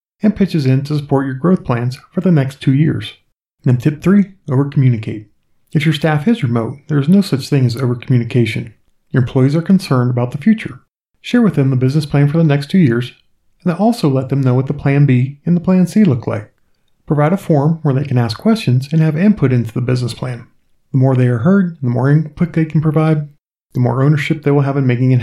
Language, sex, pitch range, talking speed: English, male, 125-160 Hz, 235 wpm